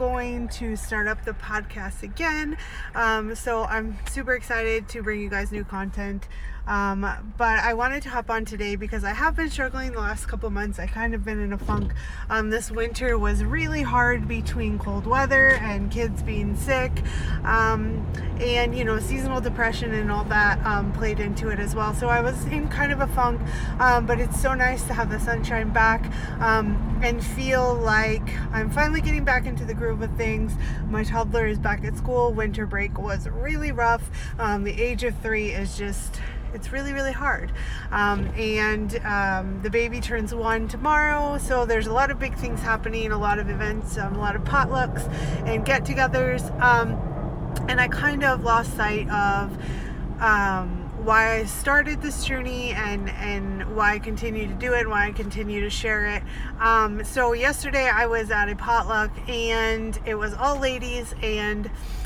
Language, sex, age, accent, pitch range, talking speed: English, female, 20-39, American, 200-235 Hz, 185 wpm